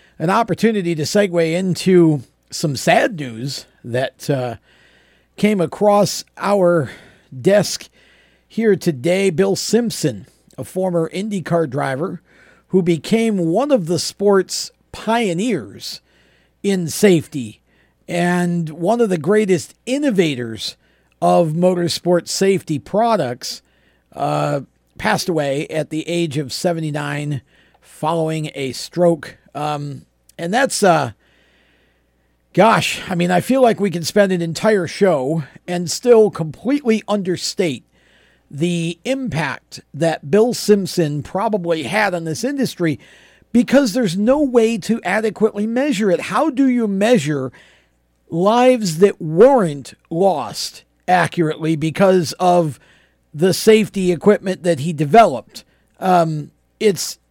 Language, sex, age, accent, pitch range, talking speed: English, male, 50-69, American, 155-205 Hz, 115 wpm